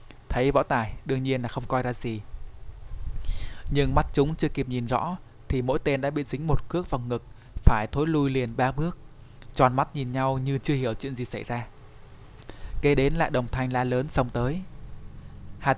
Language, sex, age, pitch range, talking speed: Vietnamese, male, 20-39, 115-135 Hz, 205 wpm